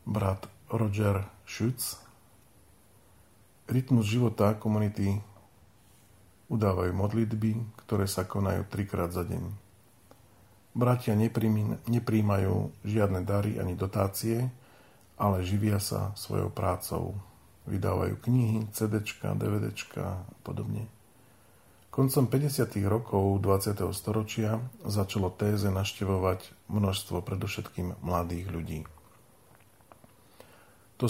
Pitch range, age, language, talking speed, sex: 100-120 Hz, 40-59, Slovak, 85 wpm, male